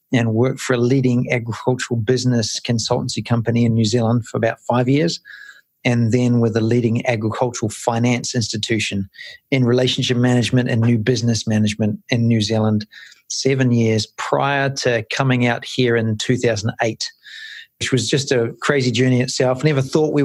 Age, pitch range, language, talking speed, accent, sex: 40-59, 115-135 Hz, English, 155 wpm, Australian, male